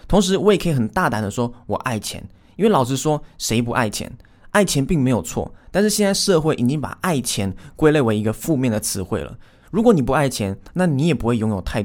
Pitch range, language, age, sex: 110-155 Hz, Chinese, 20-39, male